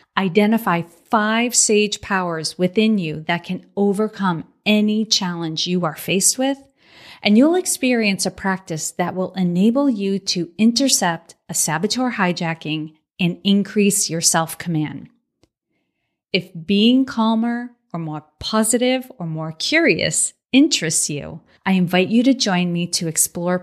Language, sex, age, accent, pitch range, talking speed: English, female, 40-59, American, 170-220 Hz, 130 wpm